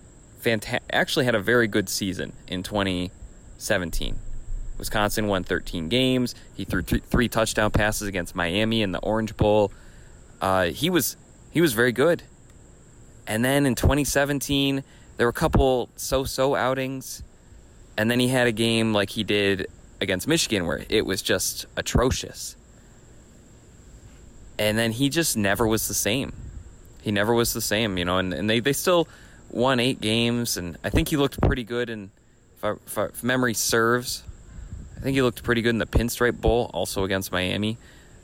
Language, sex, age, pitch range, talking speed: English, male, 20-39, 100-120 Hz, 170 wpm